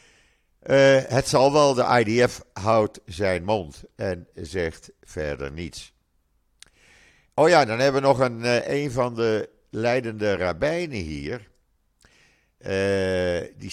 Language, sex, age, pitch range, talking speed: Dutch, male, 50-69, 85-130 Hz, 125 wpm